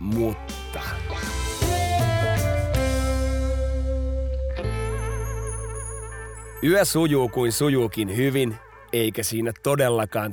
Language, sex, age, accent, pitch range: Finnish, male, 30-49, native, 110-140 Hz